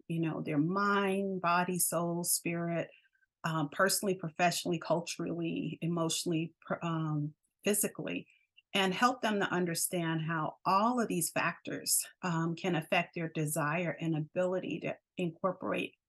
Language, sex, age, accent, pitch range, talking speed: English, female, 30-49, American, 165-195 Hz, 125 wpm